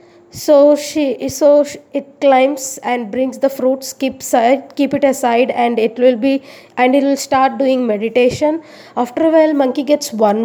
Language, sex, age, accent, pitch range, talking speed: English, female, 20-39, Indian, 245-290 Hz, 165 wpm